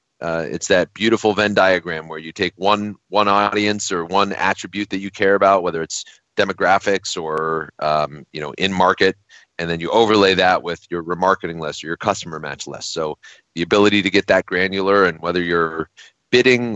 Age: 30-49